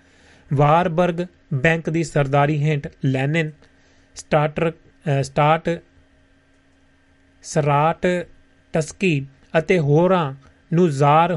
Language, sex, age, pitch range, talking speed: Punjabi, male, 30-49, 135-170 Hz, 80 wpm